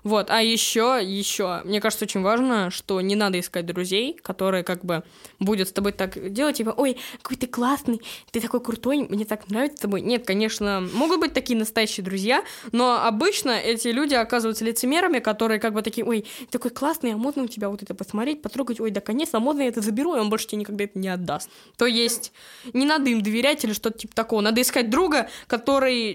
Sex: female